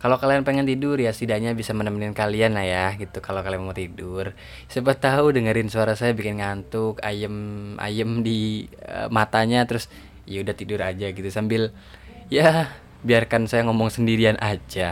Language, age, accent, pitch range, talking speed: Indonesian, 20-39, native, 95-130 Hz, 160 wpm